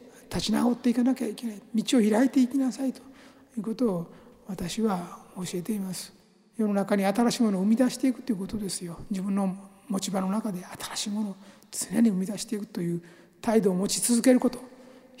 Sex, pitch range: male, 195-235 Hz